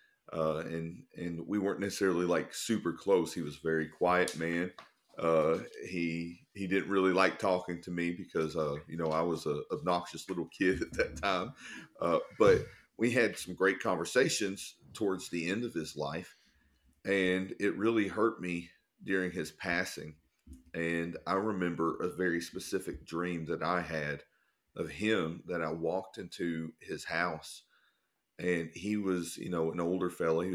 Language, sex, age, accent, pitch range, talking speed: English, male, 40-59, American, 80-90 Hz, 165 wpm